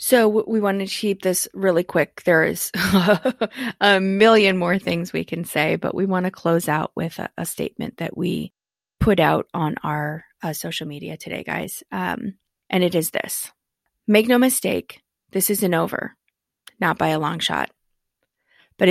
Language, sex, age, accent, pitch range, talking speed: English, female, 30-49, American, 175-215 Hz, 175 wpm